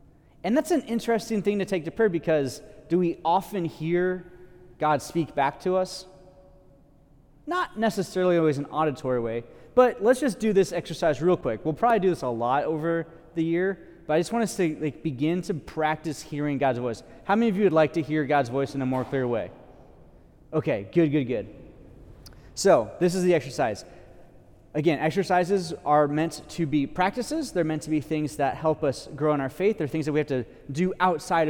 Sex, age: male, 30-49